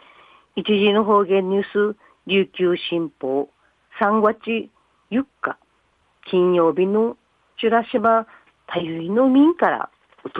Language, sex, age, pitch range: Japanese, female, 50-69, 180-240 Hz